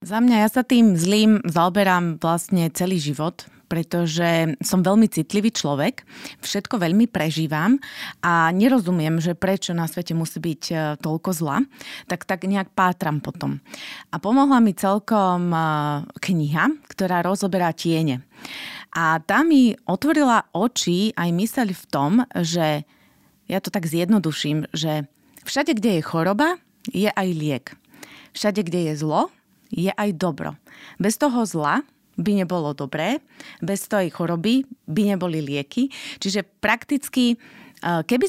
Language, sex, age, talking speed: Slovak, female, 30-49, 135 wpm